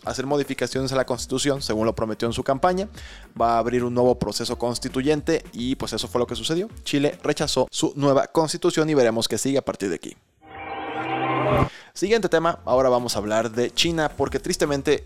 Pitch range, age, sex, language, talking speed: 115-140 Hz, 20-39, male, Spanish, 190 wpm